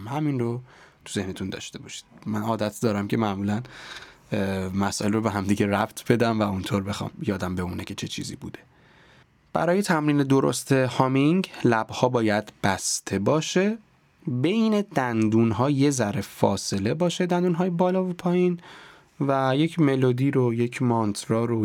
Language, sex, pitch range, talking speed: Persian, male, 100-135 Hz, 145 wpm